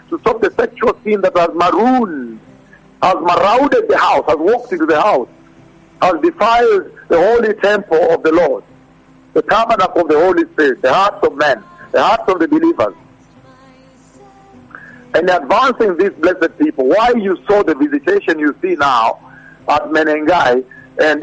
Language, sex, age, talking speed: English, male, 60-79, 160 wpm